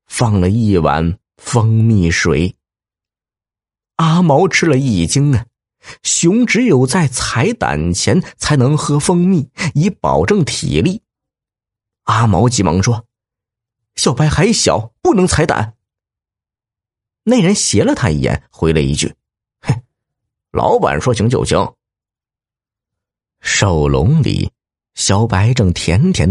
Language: Chinese